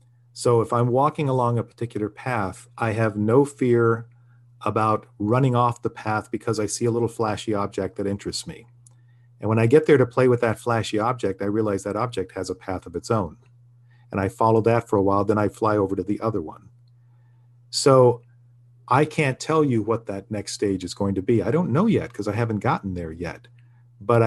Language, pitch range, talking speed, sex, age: English, 110-125 Hz, 215 wpm, male, 40-59